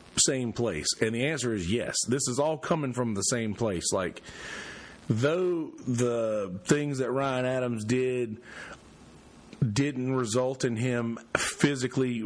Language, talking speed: English, 135 wpm